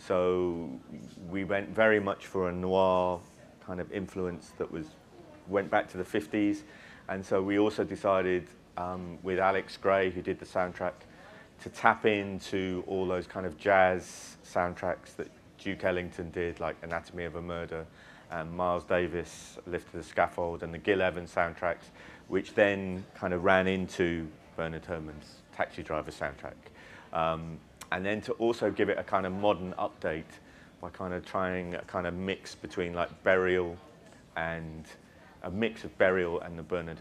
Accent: British